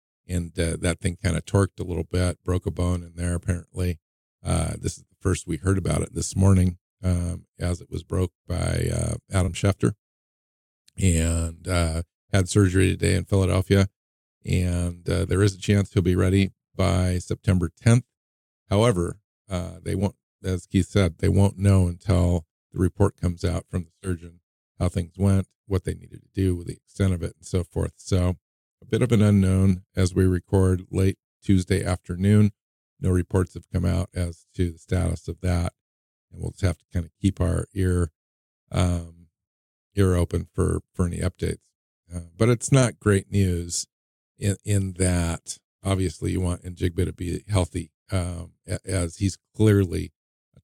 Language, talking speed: English, 180 wpm